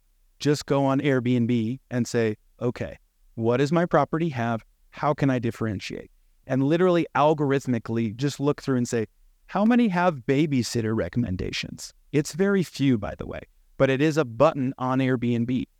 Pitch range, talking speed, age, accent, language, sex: 115-145 Hz, 160 wpm, 30-49, American, English, male